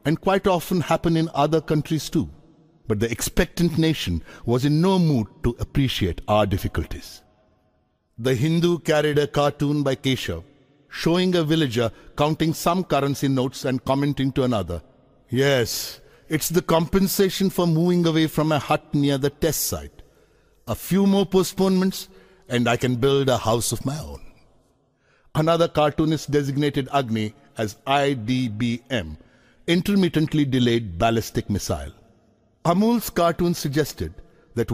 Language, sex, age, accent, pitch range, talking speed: Hindi, male, 60-79, native, 110-155 Hz, 135 wpm